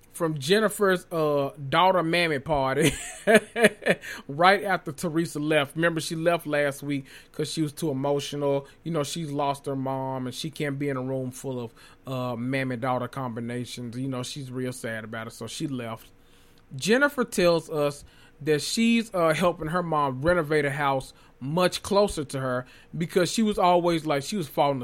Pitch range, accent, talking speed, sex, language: 130-170 Hz, American, 175 wpm, male, English